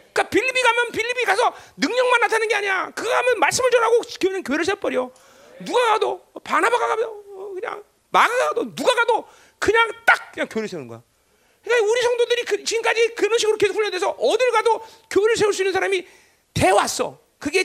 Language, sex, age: Korean, male, 40-59